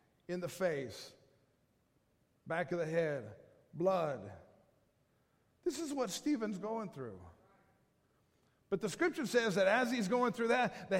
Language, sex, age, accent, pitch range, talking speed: English, male, 50-69, American, 175-245 Hz, 135 wpm